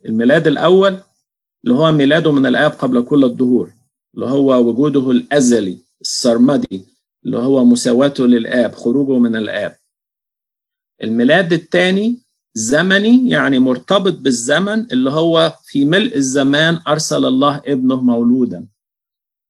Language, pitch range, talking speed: Arabic, 125-175 Hz, 115 wpm